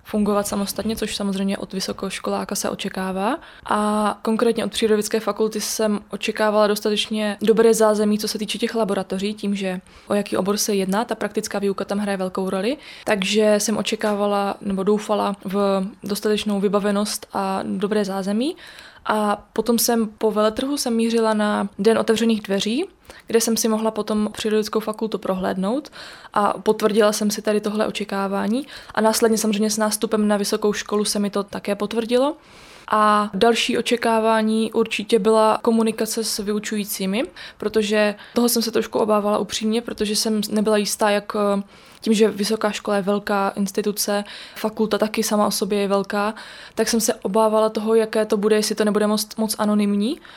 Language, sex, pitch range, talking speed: Czech, female, 205-225 Hz, 160 wpm